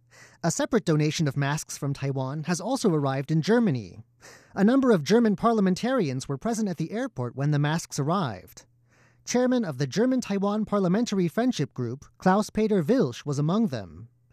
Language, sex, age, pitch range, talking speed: English, male, 30-49, 140-215 Hz, 160 wpm